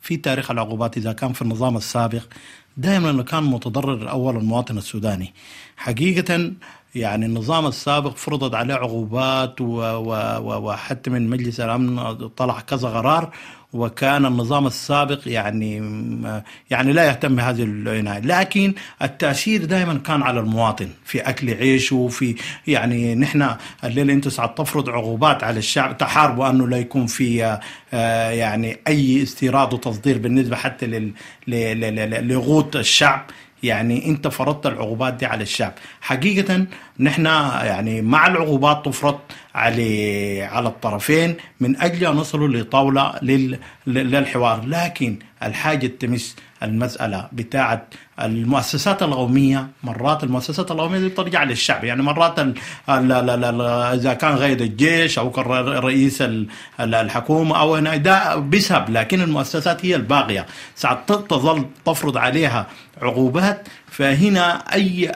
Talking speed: 120 wpm